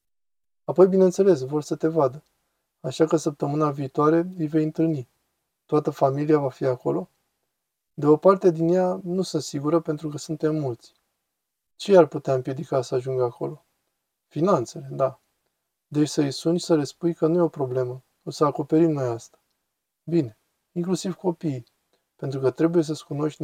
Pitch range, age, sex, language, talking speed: 135-165 Hz, 20-39, male, Romanian, 165 wpm